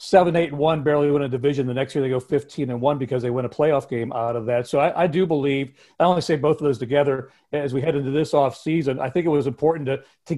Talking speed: 290 wpm